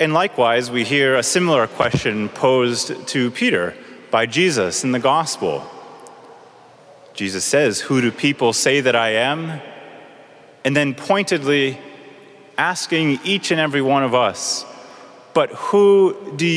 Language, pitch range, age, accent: English, 120-170 Hz, 30-49, American